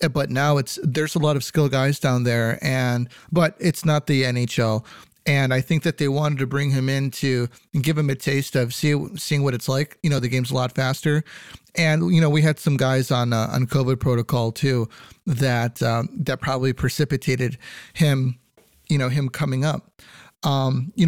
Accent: American